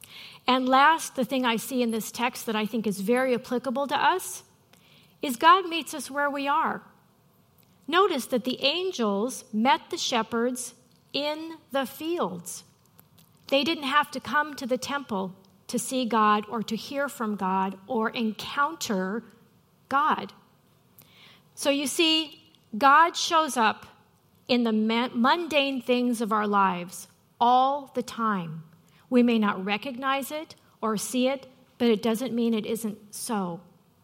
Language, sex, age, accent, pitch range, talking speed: English, female, 40-59, American, 220-280 Hz, 150 wpm